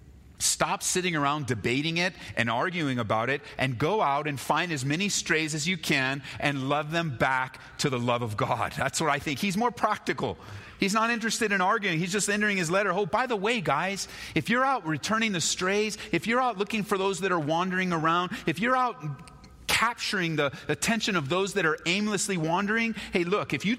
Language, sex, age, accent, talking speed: English, male, 30-49, American, 210 wpm